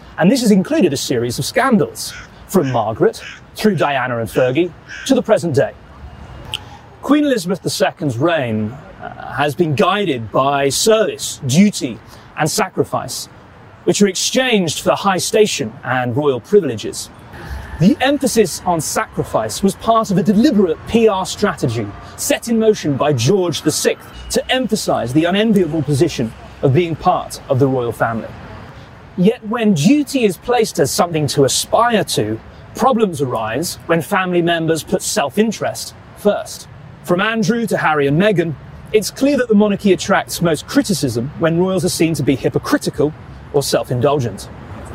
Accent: British